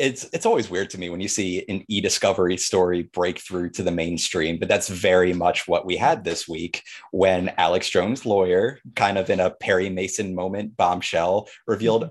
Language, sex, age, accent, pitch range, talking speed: English, male, 30-49, American, 95-115 Hz, 195 wpm